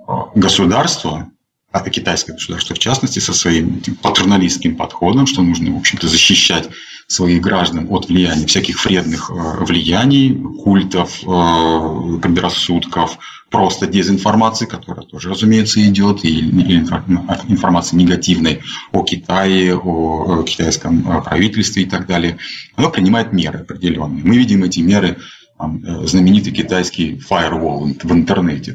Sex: male